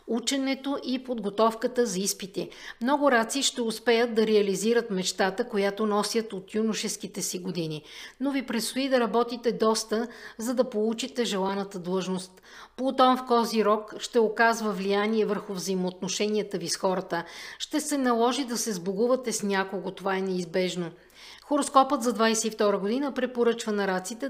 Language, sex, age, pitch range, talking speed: Bulgarian, female, 50-69, 195-245 Hz, 145 wpm